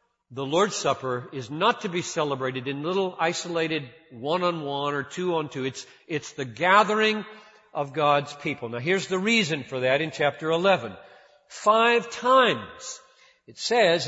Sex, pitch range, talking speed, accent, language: male, 155-225 Hz, 145 wpm, American, English